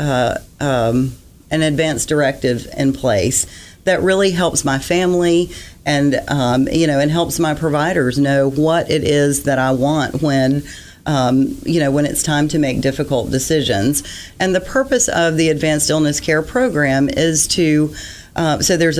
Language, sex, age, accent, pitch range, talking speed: English, female, 40-59, American, 130-160 Hz, 165 wpm